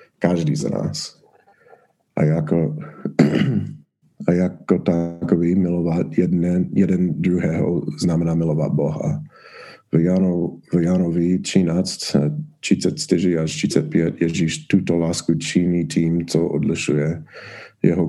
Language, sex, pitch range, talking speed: Czech, male, 85-90 Hz, 95 wpm